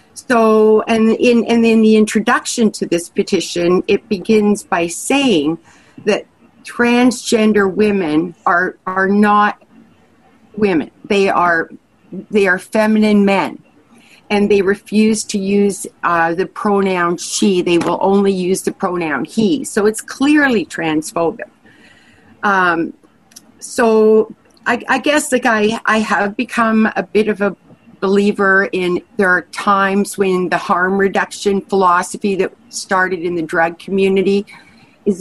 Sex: female